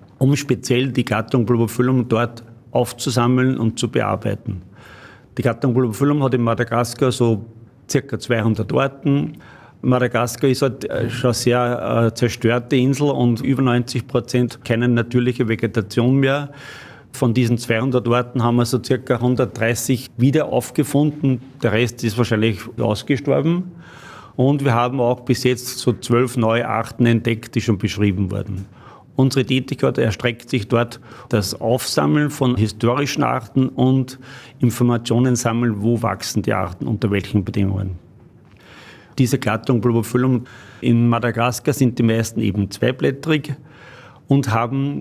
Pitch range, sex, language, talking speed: 115-130 Hz, male, German, 130 wpm